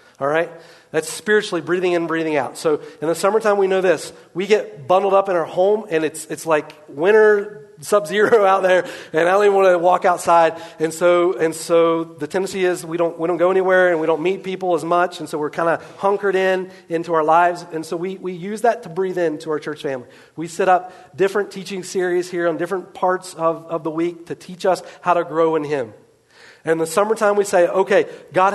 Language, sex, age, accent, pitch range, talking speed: English, male, 40-59, American, 155-190 Hz, 230 wpm